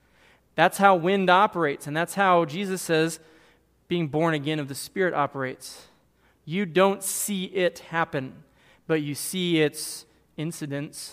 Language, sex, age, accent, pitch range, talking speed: English, male, 20-39, American, 155-190 Hz, 140 wpm